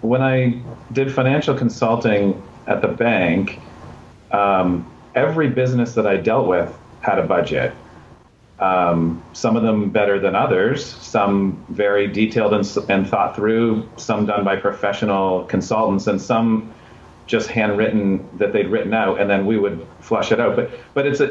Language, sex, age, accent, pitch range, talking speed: English, male, 40-59, American, 100-120 Hz, 160 wpm